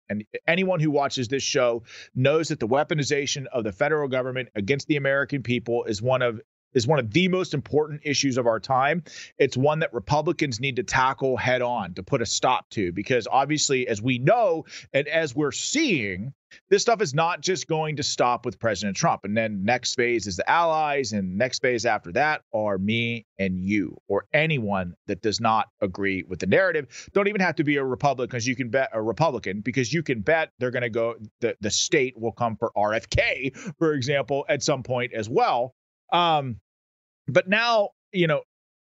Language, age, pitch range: English, 30-49, 115-155 Hz